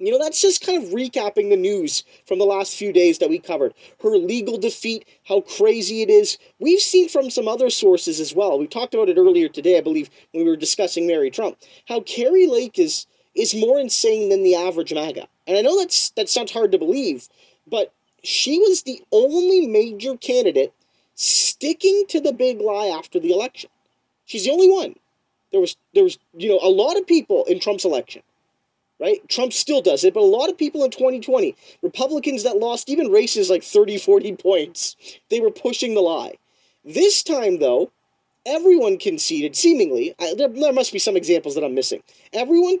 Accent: American